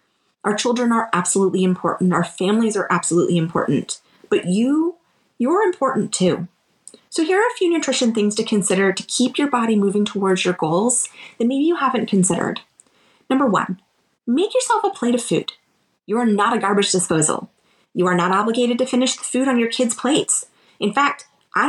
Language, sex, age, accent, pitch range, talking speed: English, female, 30-49, American, 190-270 Hz, 185 wpm